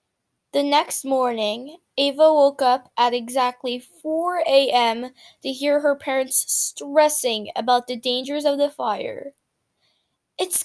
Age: 10-29